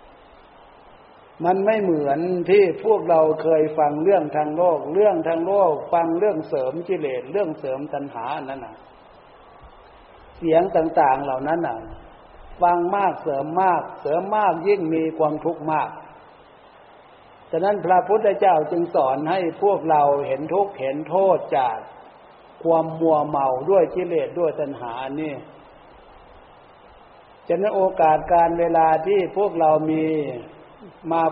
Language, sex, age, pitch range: Thai, male, 60-79, 150-185 Hz